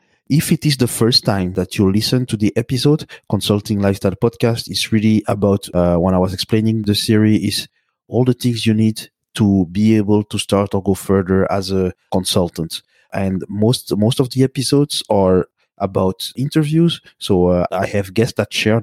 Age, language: 30-49, English